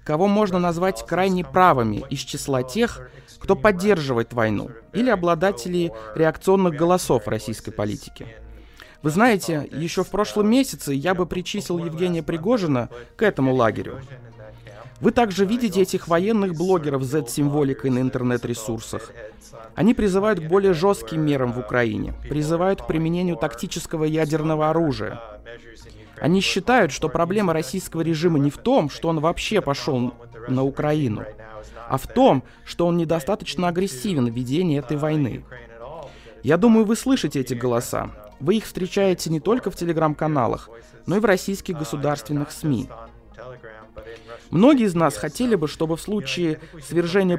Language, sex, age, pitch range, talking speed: Russian, male, 20-39, 125-185 Hz, 140 wpm